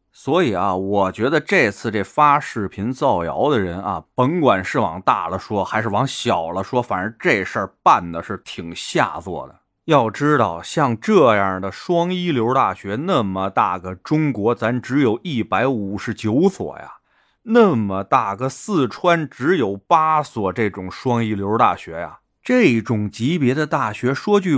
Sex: male